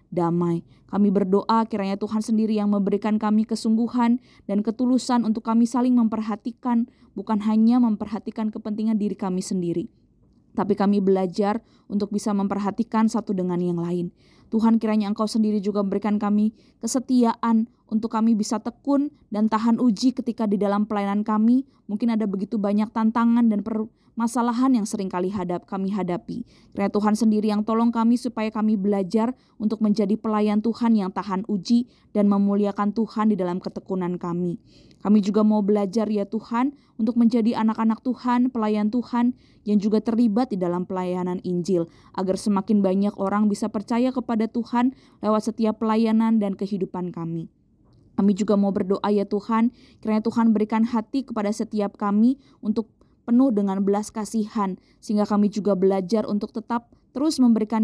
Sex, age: female, 20-39